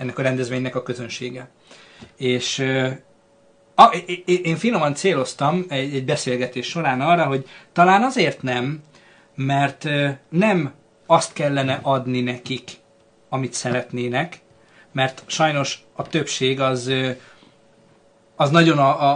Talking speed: 120 wpm